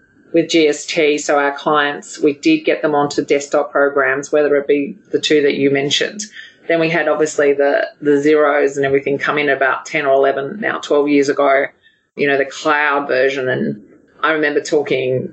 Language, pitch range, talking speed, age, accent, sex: English, 140-155 Hz, 190 wpm, 30-49, Australian, female